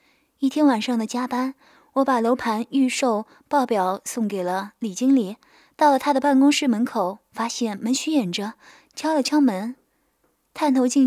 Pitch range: 225-285 Hz